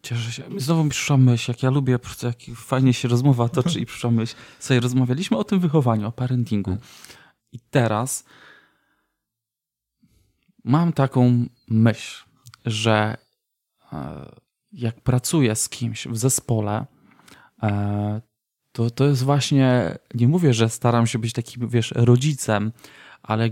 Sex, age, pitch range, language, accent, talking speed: male, 20-39, 115-135 Hz, Polish, native, 130 wpm